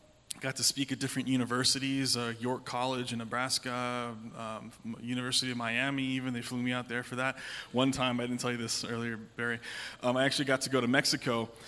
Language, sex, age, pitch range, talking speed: English, male, 20-39, 120-140 Hz, 205 wpm